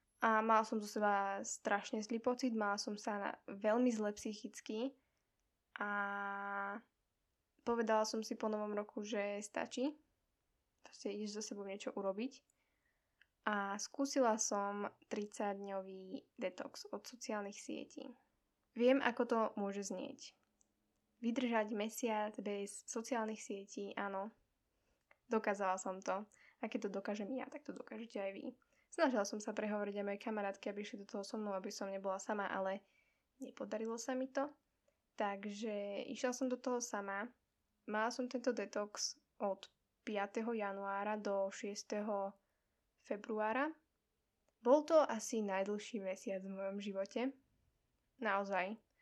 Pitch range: 200-245 Hz